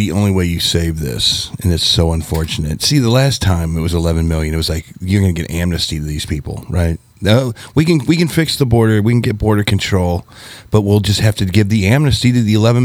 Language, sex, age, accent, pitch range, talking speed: English, male, 40-59, American, 90-115 Hz, 250 wpm